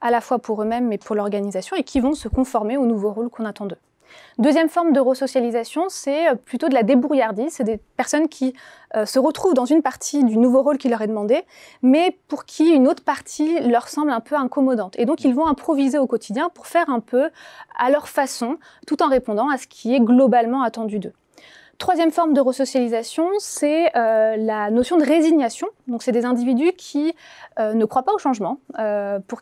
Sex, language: female, French